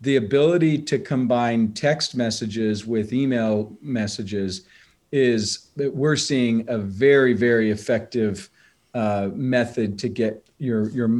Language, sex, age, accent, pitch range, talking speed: English, male, 40-59, American, 115-135 Hz, 125 wpm